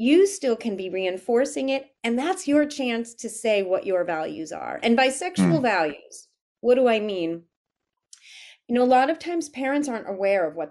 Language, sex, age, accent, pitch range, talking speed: English, female, 30-49, American, 175-240 Hz, 195 wpm